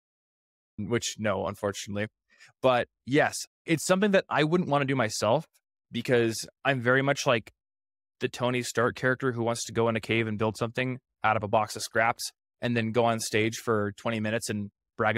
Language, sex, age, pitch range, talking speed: English, male, 20-39, 105-125 Hz, 195 wpm